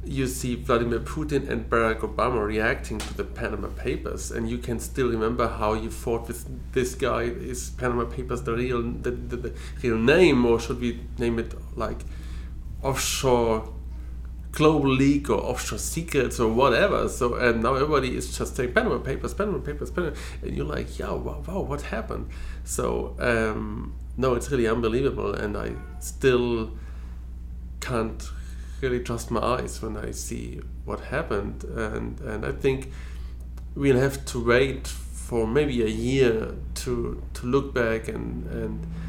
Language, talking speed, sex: English, 160 wpm, male